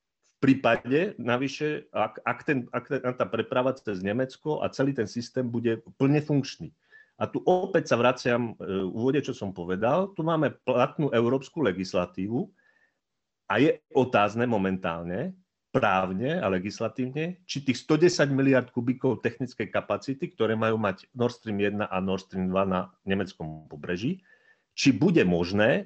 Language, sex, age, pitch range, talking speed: Slovak, male, 40-59, 95-125 Hz, 140 wpm